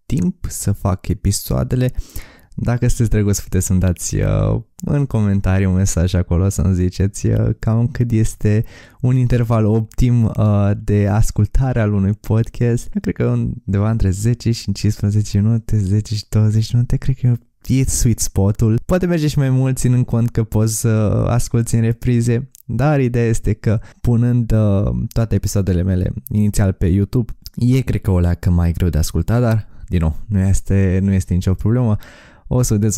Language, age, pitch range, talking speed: Romanian, 20-39, 95-120 Hz, 175 wpm